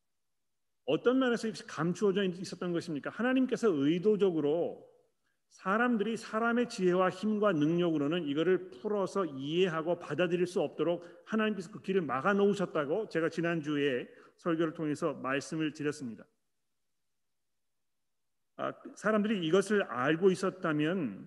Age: 40-59